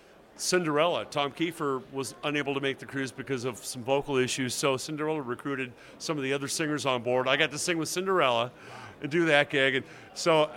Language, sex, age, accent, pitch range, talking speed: English, male, 50-69, American, 130-160 Hz, 205 wpm